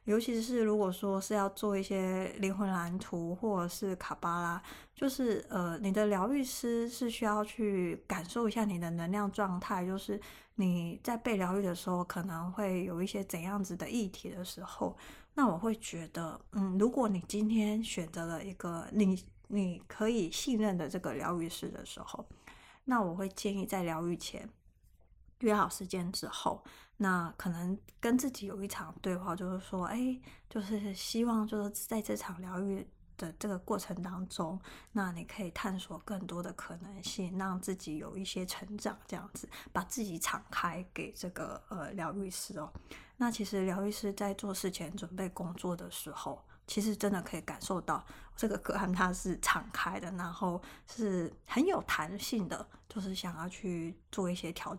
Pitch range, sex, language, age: 180-210 Hz, female, Chinese, 20-39